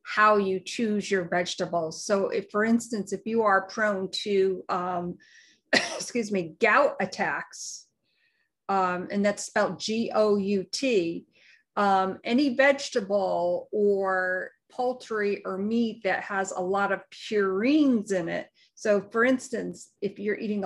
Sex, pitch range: female, 190-220 Hz